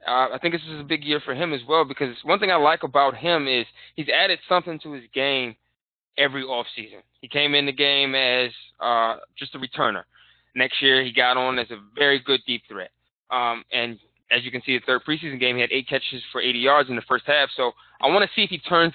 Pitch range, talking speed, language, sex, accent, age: 120-150 Hz, 250 wpm, English, male, American, 20-39